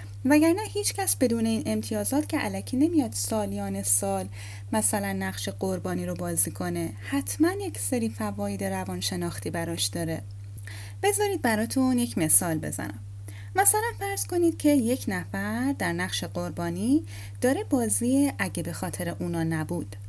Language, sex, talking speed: Persian, female, 135 wpm